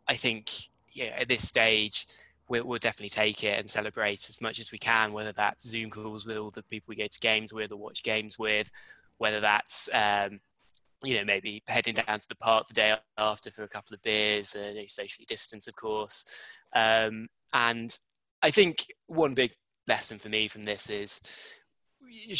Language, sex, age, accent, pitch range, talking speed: English, male, 20-39, British, 105-120 Hz, 190 wpm